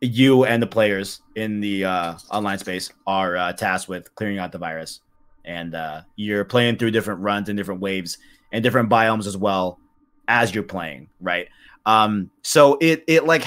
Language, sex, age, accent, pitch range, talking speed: English, male, 20-39, American, 100-135 Hz, 185 wpm